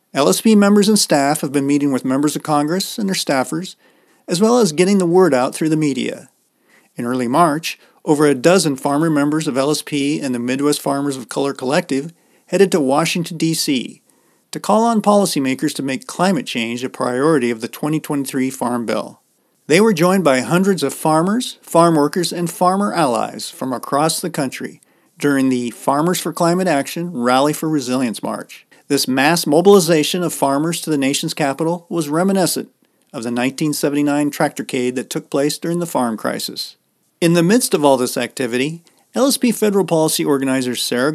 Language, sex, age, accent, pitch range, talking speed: English, male, 40-59, American, 135-175 Hz, 175 wpm